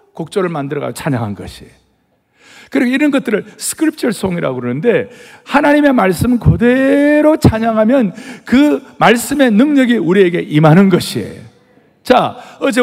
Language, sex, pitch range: Korean, male, 155-260 Hz